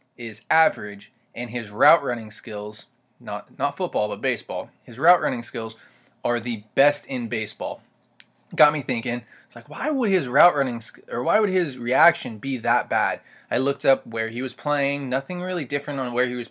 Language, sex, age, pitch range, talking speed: English, male, 20-39, 120-155 Hz, 195 wpm